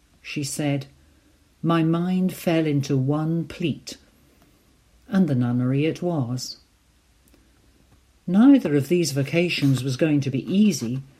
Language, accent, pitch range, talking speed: English, British, 130-175 Hz, 120 wpm